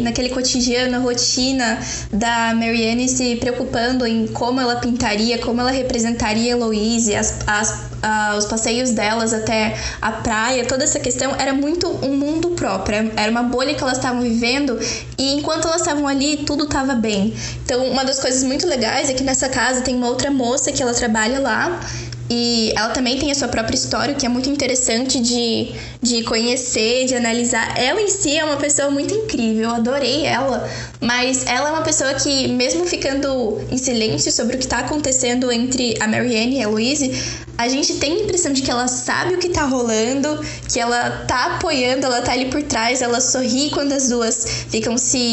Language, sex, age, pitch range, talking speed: Portuguese, female, 10-29, 235-275 Hz, 190 wpm